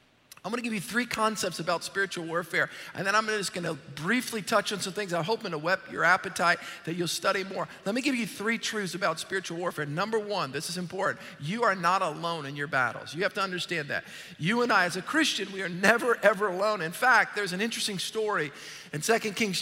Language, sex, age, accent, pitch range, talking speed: English, male, 50-69, American, 170-220 Hz, 245 wpm